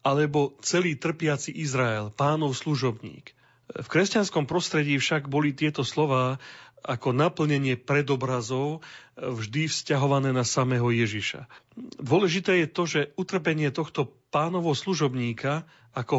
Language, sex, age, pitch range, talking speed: Slovak, male, 40-59, 130-160 Hz, 110 wpm